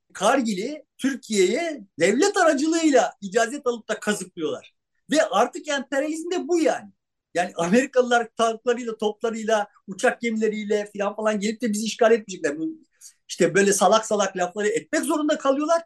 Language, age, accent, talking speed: Turkish, 50-69, native, 130 wpm